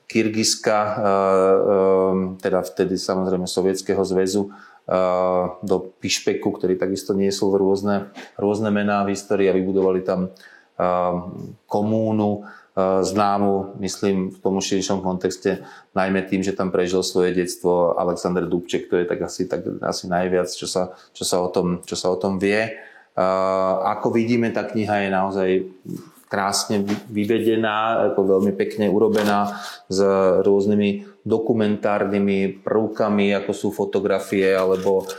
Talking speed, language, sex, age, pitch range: 125 wpm, Slovak, male, 30-49, 95-105 Hz